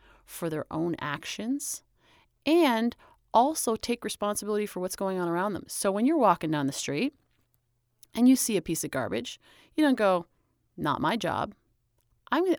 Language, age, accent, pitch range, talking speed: English, 30-49, American, 155-215 Hz, 165 wpm